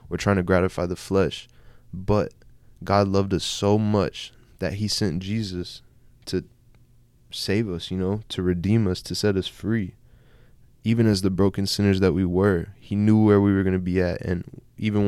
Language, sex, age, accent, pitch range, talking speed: English, male, 20-39, American, 90-105 Hz, 185 wpm